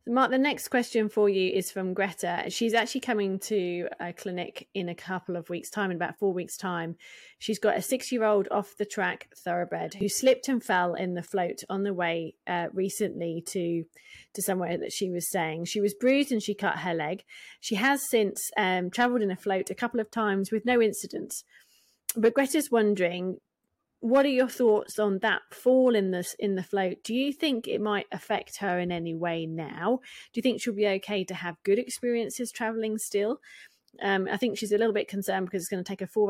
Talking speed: 210 wpm